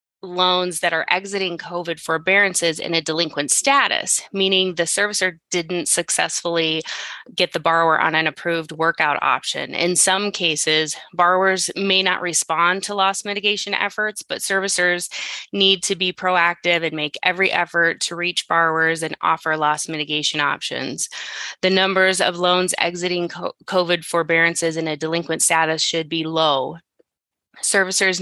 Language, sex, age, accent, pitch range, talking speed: English, female, 20-39, American, 160-185 Hz, 145 wpm